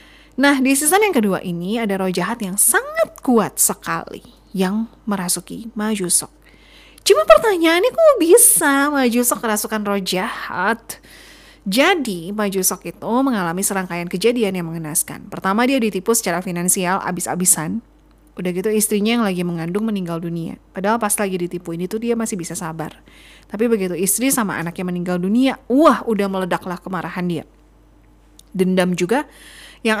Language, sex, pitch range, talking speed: Indonesian, female, 185-245 Hz, 140 wpm